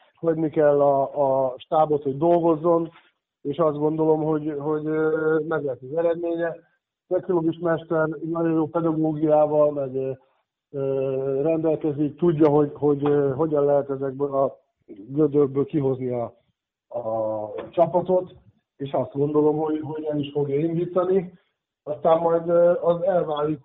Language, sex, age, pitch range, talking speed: Hungarian, male, 50-69, 145-165 Hz, 130 wpm